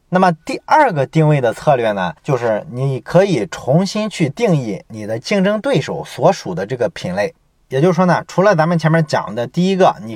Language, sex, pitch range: Chinese, male, 130-175 Hz